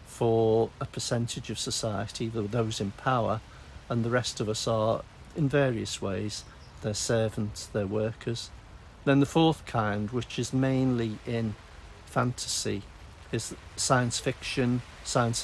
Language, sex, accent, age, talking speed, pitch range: English, male, British, 50-69, 130 wpm, 105-135 Hz